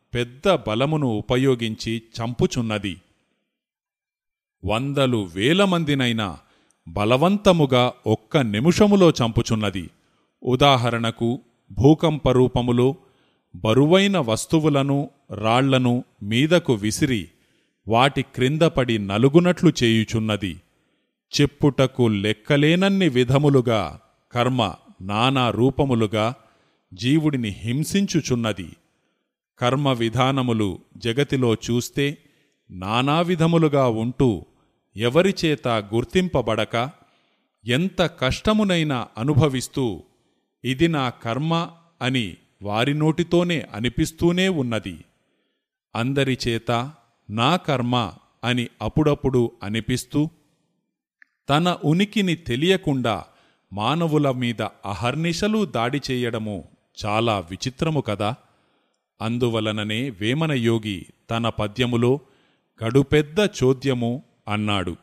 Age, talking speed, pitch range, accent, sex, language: 30-49, 65 wpm, 110-150 Hz, native, male, Telugu